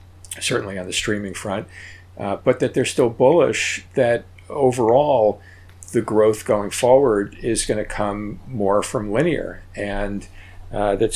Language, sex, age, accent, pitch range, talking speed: English, male, 50-69, American, 90-105 Hz, 145 wpm